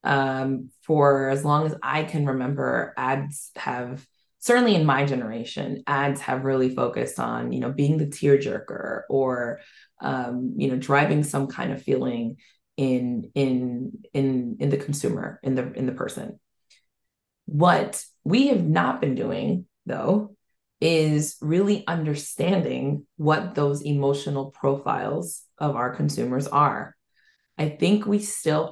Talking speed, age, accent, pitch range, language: 140 wpm, 20-39, American, 135-155 Hz, English